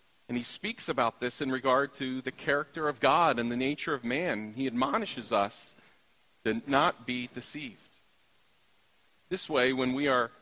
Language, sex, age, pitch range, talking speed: English, male, 40-59, 115-145 Hz, 165 wpm